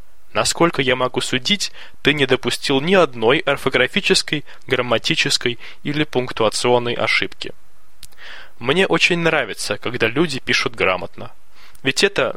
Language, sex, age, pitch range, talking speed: Russian, male, 20-39, 125-160 Hz, 110 wpm